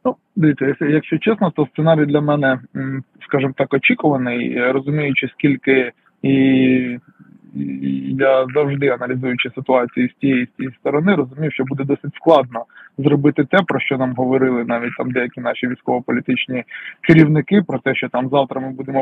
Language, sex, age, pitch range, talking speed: Ukrainian, male, 20-39, 130-155 Hz, 150 wpm